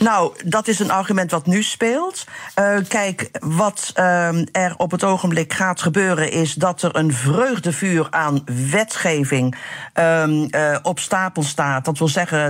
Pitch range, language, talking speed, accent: 150-180 Hz, Dutch, 160 wpm, Dutch